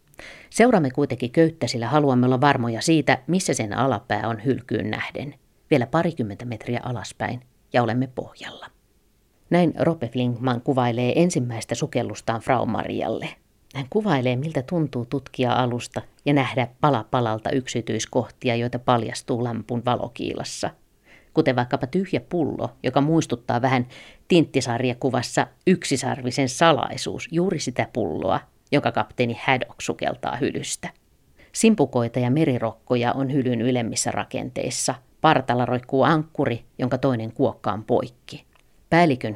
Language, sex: Finnish, female